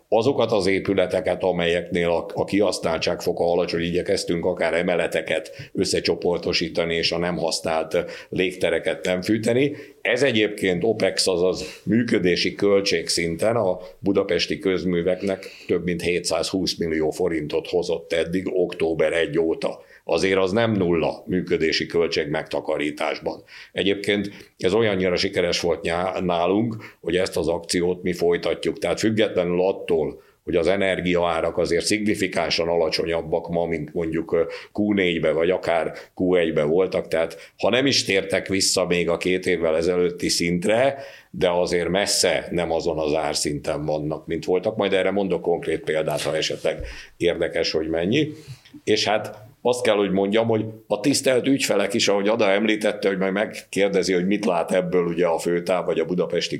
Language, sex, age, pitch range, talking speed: Hungarian, male, 60-79, 85-110 Hz, 140 wpm